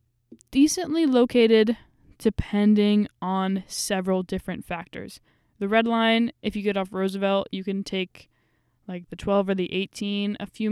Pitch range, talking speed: 175-220 Hz, 145 wpm